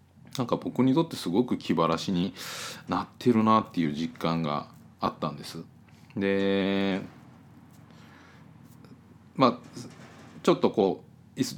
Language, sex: Japanese, male